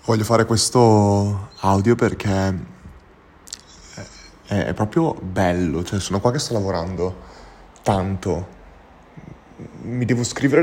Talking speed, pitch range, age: 115 wpm, 105-150 Hz, 20-39